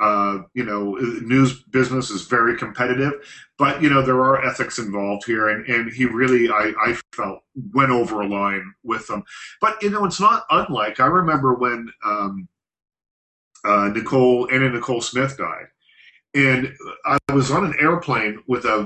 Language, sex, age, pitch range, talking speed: English, male, 40-59, 110-135 Hz, 165 wpm